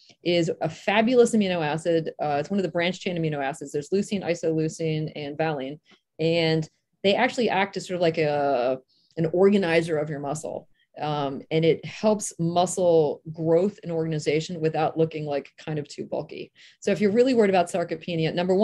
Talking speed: 180 wpm